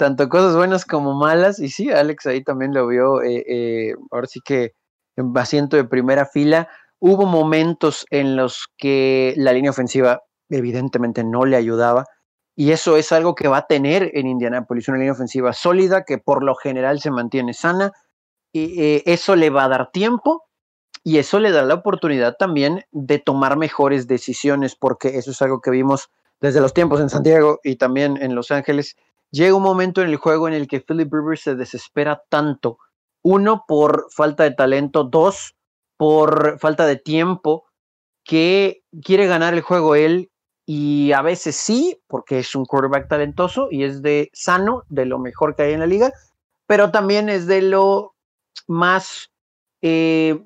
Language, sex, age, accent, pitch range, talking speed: Spanish, male, 30-49, Mexican, 135-170 Hz, 175 wpm